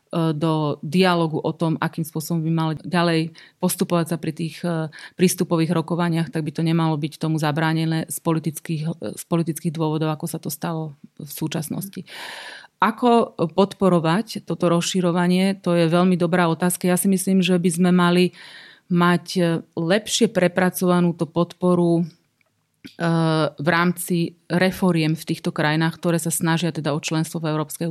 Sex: female